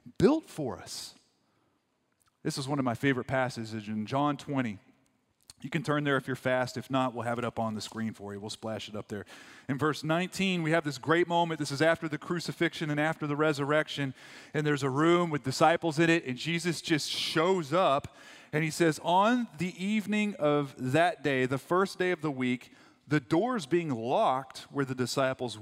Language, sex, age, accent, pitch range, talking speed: English, male, 30-49, American, 115-165 Hz, 205 wpm